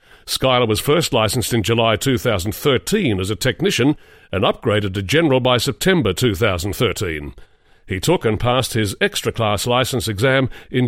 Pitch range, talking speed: 110-145 Hz, 145 wpm